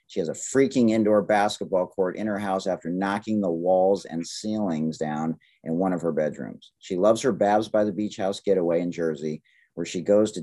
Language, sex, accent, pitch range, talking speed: English, male, American, 85-110 Hz, 215 wpm